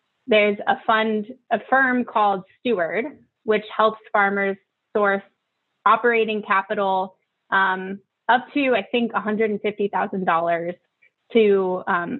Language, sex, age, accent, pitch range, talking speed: English, female, 20-39, American, 190-235 Hz, 105 wpm